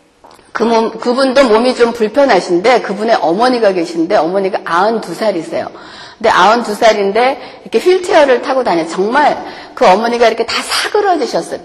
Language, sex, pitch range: Korean, female, 205-285 Hz